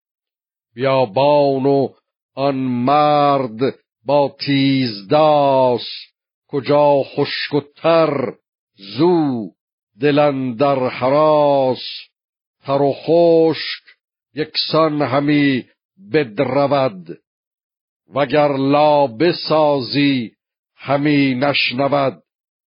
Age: 50-69